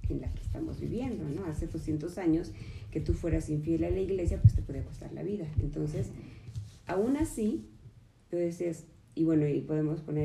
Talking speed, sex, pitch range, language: 175 wpm, female, 110-165 Hz, Spanish